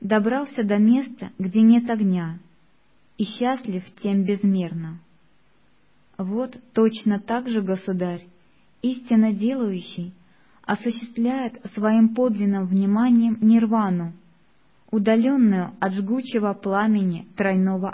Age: 20-39